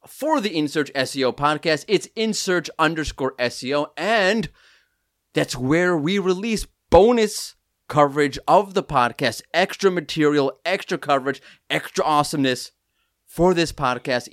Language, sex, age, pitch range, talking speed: English, male, 30-49, 130-165 Hz, 115 wpm